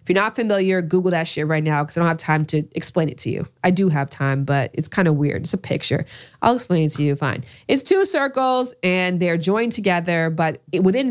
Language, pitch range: English, 160-205 Hz